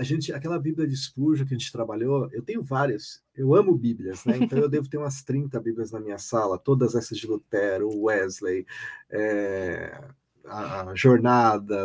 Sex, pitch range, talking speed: male, 115-150 Hz, 175 wpm